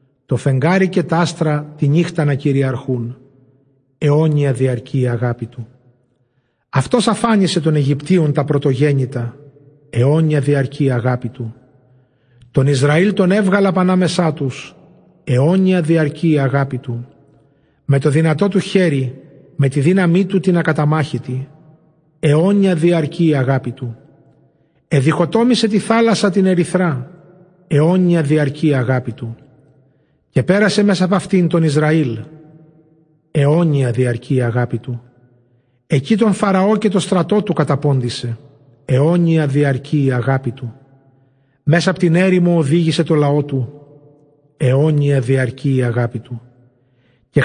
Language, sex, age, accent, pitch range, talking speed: Greek, male, 40-59, native, 130-175 Hz, 120 wpm